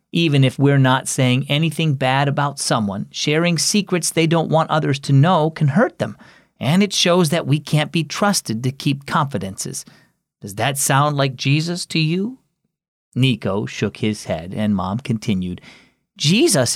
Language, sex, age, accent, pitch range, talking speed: English, male, 40-59, American, 130-185 Hz, 165 wpm